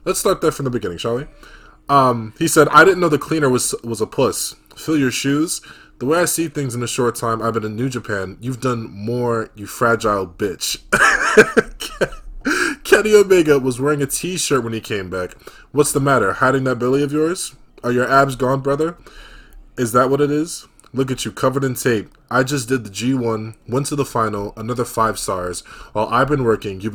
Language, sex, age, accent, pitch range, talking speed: English, male, 20-39, American, 105-140 Hz, 210 wpm